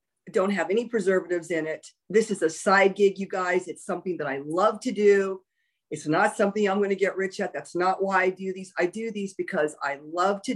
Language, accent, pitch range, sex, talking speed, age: English, American, 180-225 Hz, female, 240 wpm, 50-69